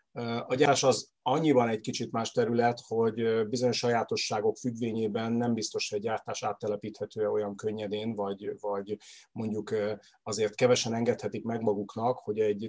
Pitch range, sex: 110-140 Hz, male